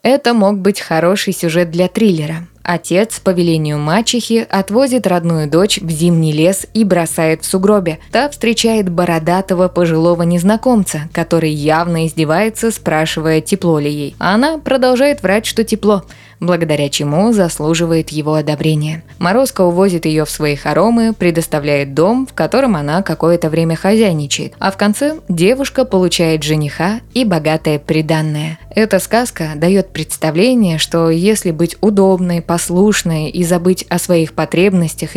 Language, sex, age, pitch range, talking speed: Russian, female, 20-39, 160-210 Hz, 135 wpm